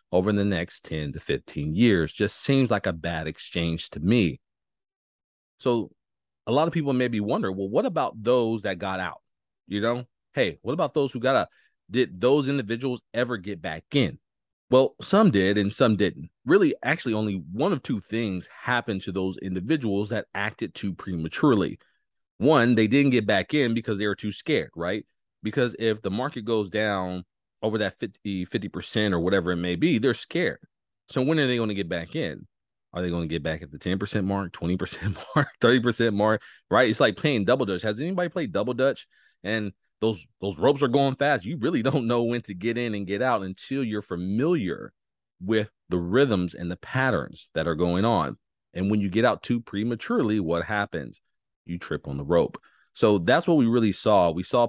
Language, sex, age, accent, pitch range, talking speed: English, male, 30-49, American, 95-120 Hz, 200 wpm